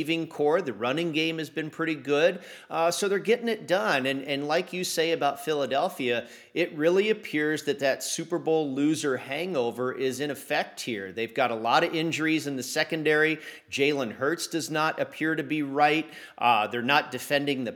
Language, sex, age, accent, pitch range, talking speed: English, male, 40-59, American, 135-165 Hz, 190 wpm